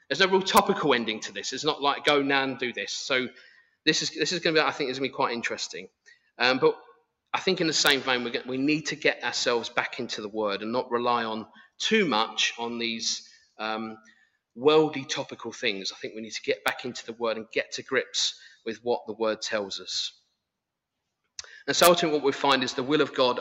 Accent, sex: British, male